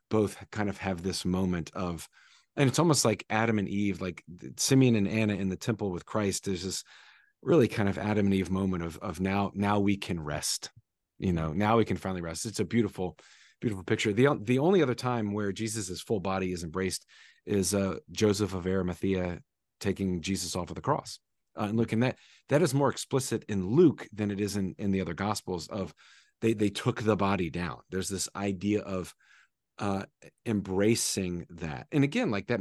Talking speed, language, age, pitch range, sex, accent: 200 wpm, English, 30-49, 95-110 Hz, male, American